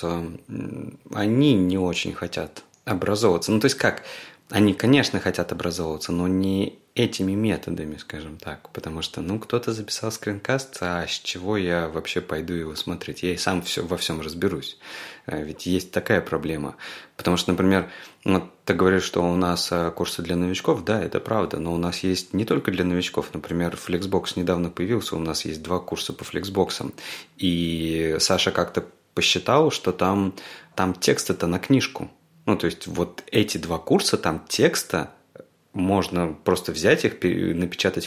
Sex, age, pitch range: male, 20-39, 85-105 Hz